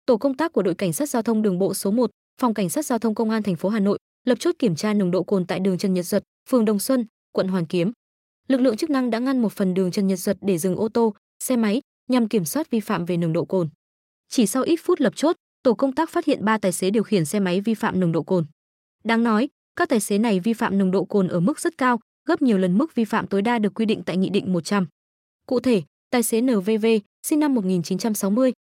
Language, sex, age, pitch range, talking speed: Vietnamese, female, 20-39, 195-250 Hz, 270 wpm